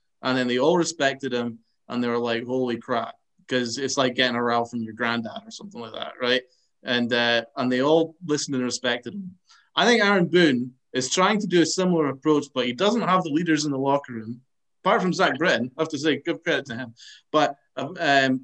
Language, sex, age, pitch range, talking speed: English, male, 20-39, 130-195 Hz, 230 wpm